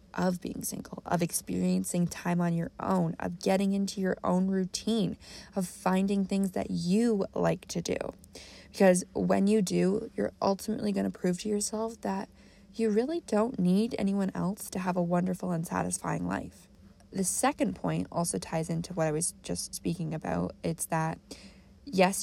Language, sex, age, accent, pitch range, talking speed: English, female, 20-39, American, 170-215 Hz, 170 wpm